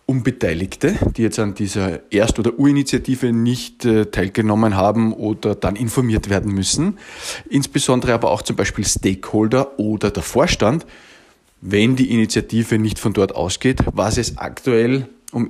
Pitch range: 105-145 Hz